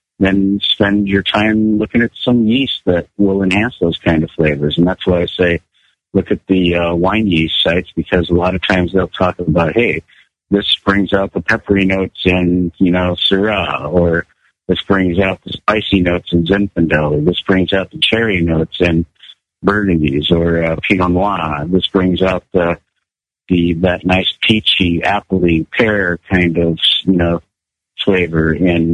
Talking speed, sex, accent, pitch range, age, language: 175 wpm, male, American, 85-100 Hz, 50-69, English